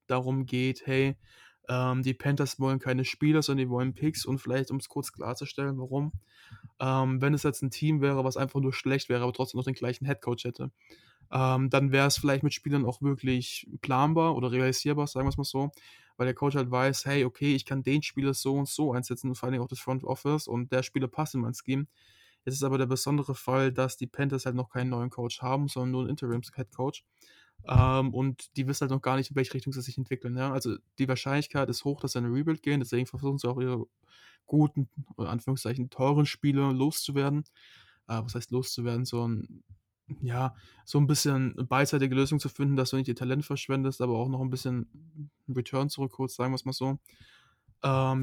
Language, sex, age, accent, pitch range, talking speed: German, male, 20-39, German, 125-140 Hz, 215 wpm